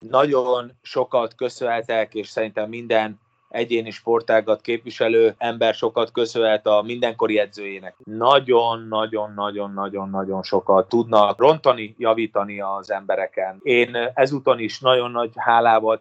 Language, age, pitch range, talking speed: Hungarian, 30-49, 110-125 Hz, 105 wpm